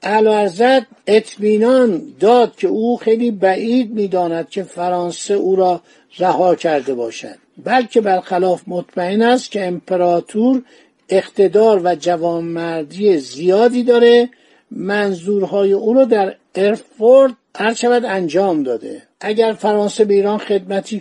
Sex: male